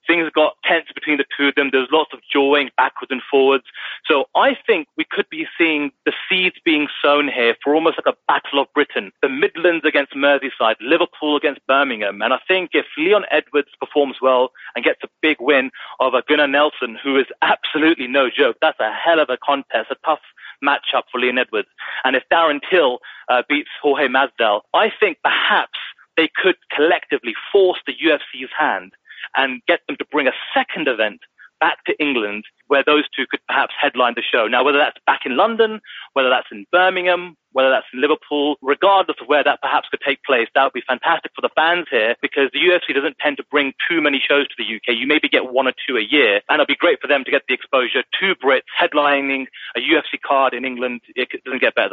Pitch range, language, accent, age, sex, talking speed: 135-170 Hz, English, British, 30-49, male, 215 wpm